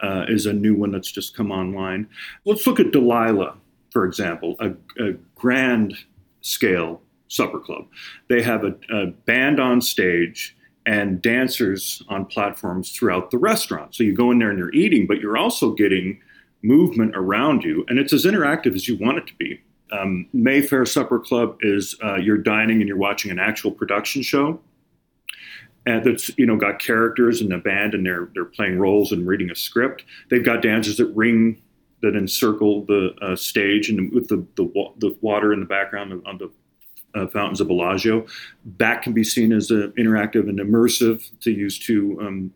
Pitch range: 95-115 Hz